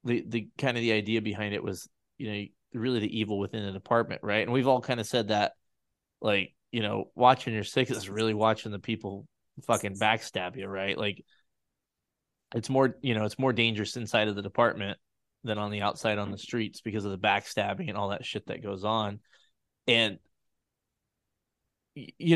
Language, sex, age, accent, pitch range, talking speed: English, male, 20-39, American, 105-130 Hz, 195 wpm